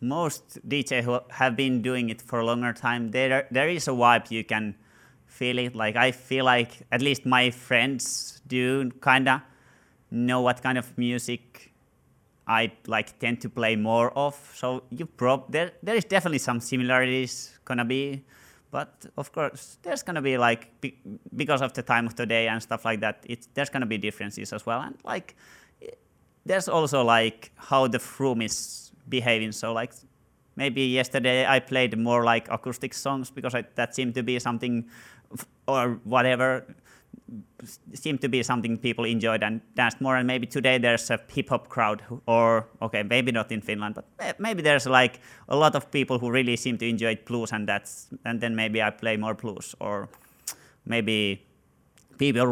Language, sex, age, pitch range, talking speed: English, male, 30-49, 115-130 Hz, 175 wpm